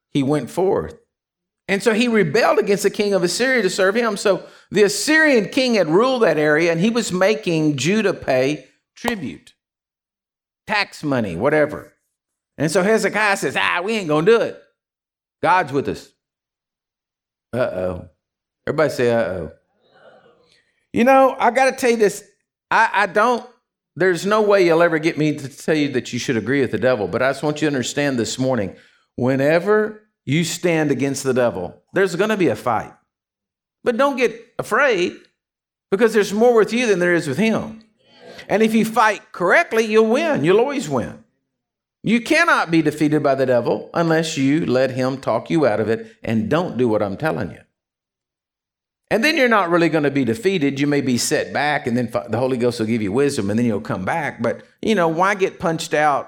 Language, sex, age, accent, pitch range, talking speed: English, male, 50-69, American, 130-215 Hz, 195 wpm